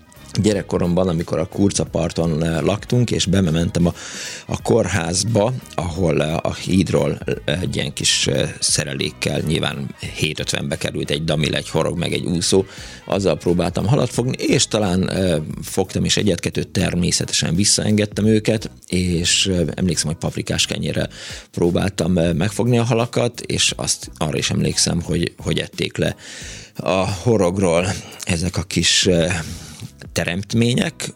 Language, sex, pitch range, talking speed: Hungarian, male, 85-100 Hz, 135 wpm